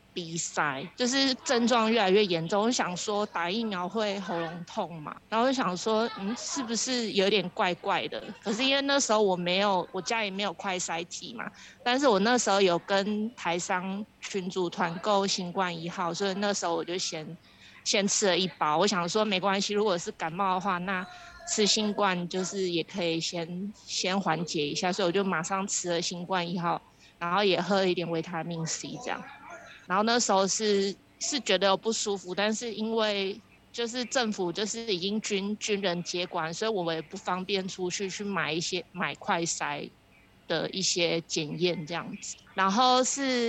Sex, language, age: female, Chinese, 20-39